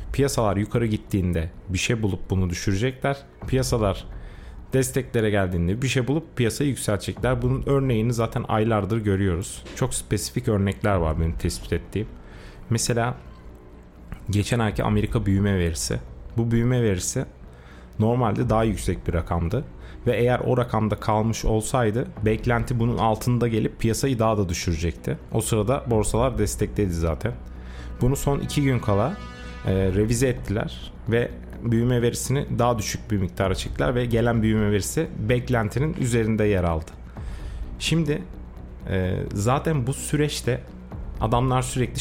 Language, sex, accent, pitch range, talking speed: Turkish, male, native, 90-120 Hz, 130 wpm